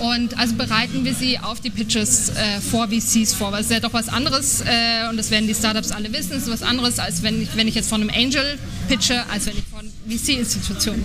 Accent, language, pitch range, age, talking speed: German, German, 210-235 Hz, 20-39, 240 wpm